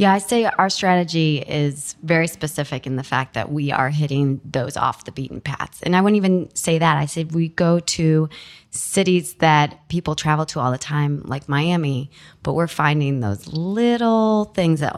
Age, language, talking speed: 20-39, English, 190 wpm